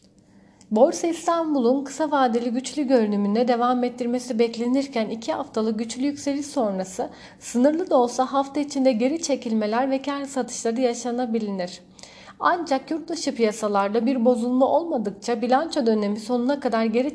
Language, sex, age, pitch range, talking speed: Turkish, female, 40-59, 230-275 Hz, 125 wpm